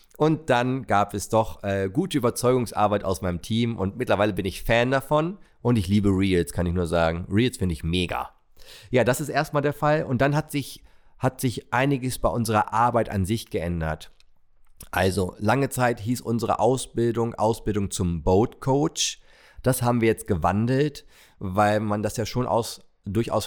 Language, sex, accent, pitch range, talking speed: German, male, German, 100-120 Hz, 175 wpm